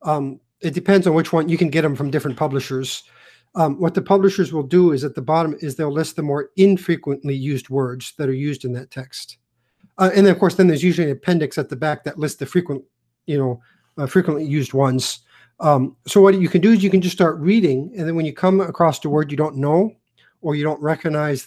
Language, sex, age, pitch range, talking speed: English, male, 50-69, 140-175 Hz, 245 wpm